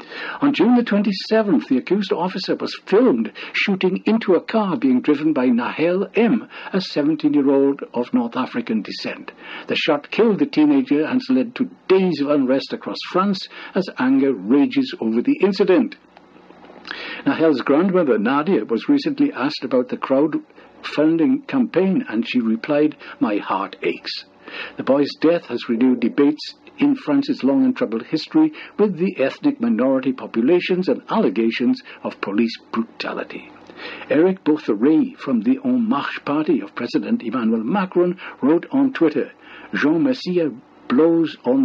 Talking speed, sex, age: 145 wpm, male, 60-79